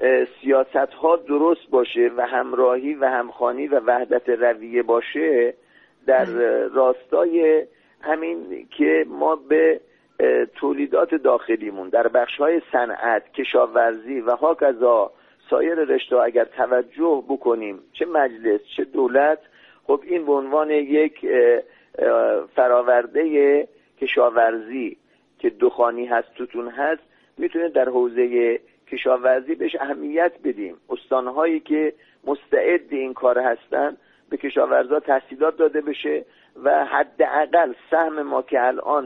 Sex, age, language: male, 50-69, Persian